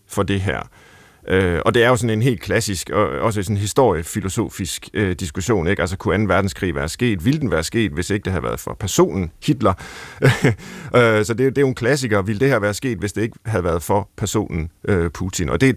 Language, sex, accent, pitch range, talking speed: Danish, male, native, 100-130 Hz, 230 wpm